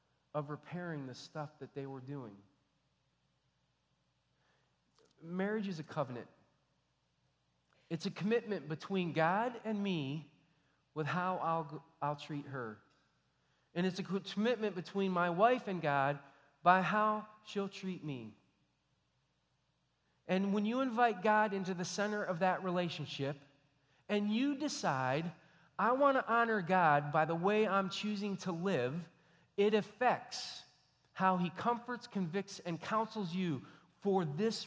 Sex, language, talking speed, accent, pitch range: male, English, 130 wpm, American, 140-195 Hz